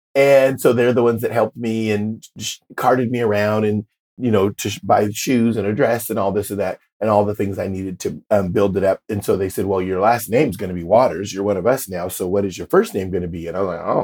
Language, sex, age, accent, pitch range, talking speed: English, male, 40-59, American, 100-135 Hz, 300 wpm